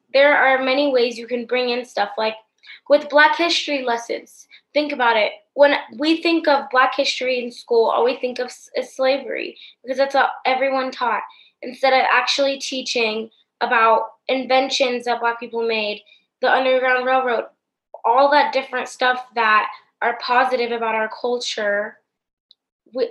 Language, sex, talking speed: English, female, 155 wpm